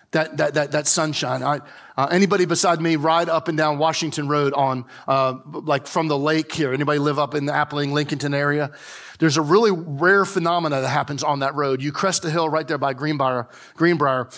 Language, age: English, 40-59